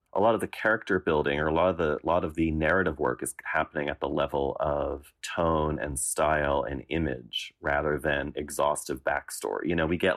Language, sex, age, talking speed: English, male, 30-49, 210 wpm